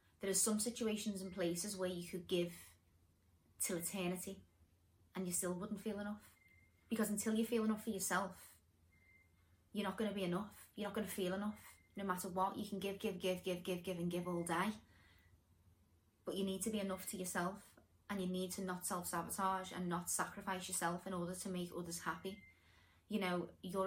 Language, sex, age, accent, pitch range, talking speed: English, female, 20-39, British, 175-190 Hz, 195 wpm